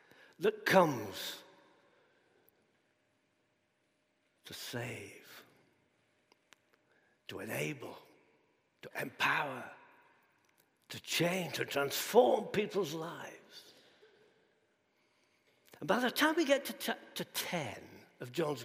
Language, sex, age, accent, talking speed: English, male, 60-79, British, 80 wpm